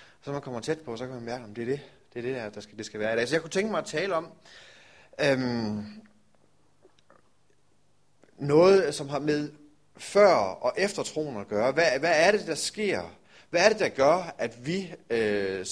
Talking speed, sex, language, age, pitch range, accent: 210 wpm, male, Danish, 30-49, 115-165 Hz, native